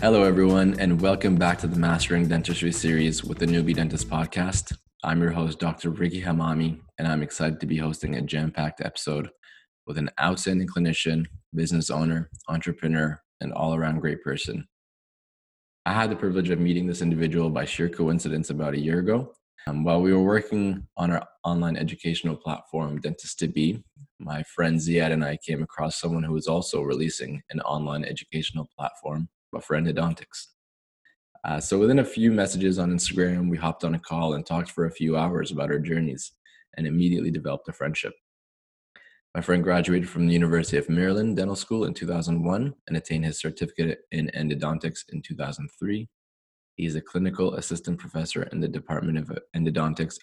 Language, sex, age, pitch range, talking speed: English, male, 20-39, 80-90 Hz, 170 wpm